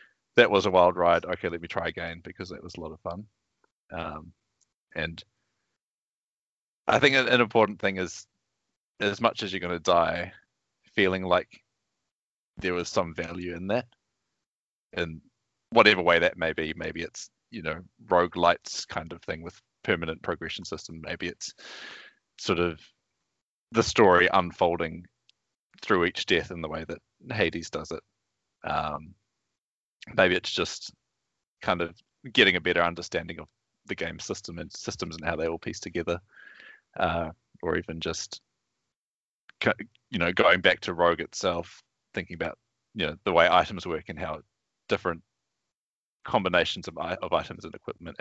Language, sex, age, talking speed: English, male, 30-49, 155 wpm